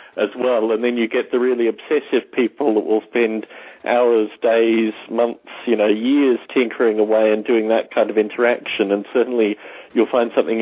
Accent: Australian